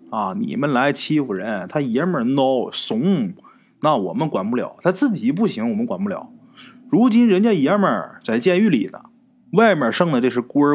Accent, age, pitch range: native, 30-49, 160-245 Hz